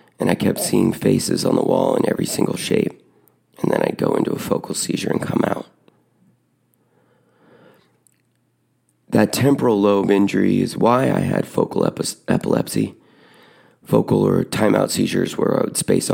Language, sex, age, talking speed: English, male, 30-49, 155 wpm